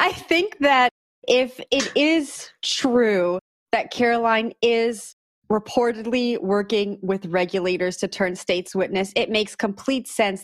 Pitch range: 190-225 Hz